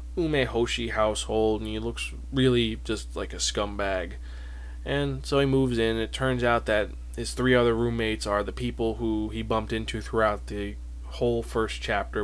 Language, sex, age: English, male, 20-39